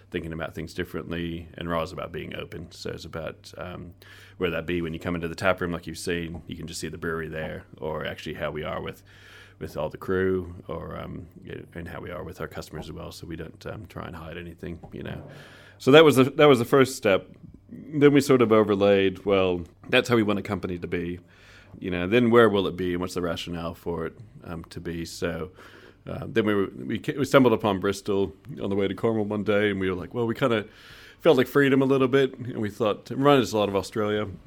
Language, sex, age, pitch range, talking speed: English, male, 30-49, 85-110 Hz, 250 wpm